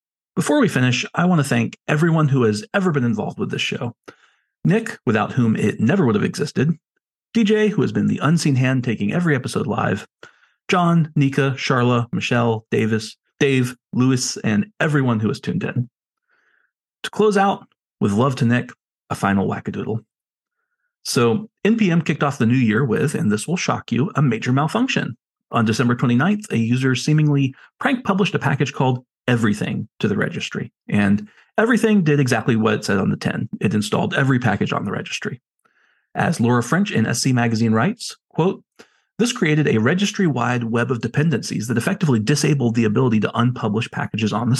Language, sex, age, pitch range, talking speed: English, male, 40-59, 120-175 Hz, 175 wpm